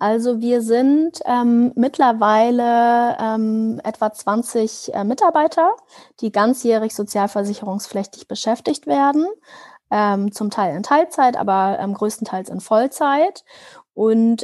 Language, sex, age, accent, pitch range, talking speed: German, female, 30-49, German, 195-235 Hz, 110 wpm